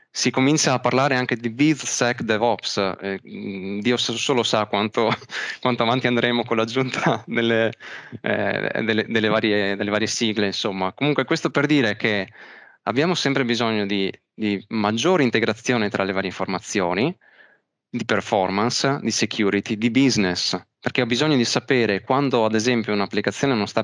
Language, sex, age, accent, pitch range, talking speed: Italian, male, 20-39, native, 100-125 Hz, 150 wpm